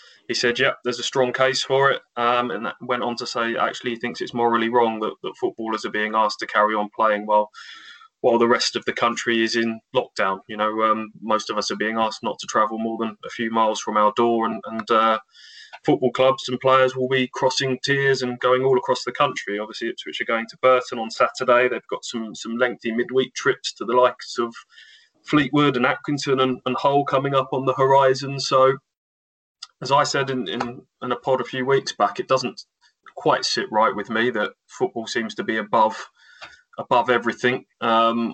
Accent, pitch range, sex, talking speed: British, 115-130 Hz, male, 220 wpm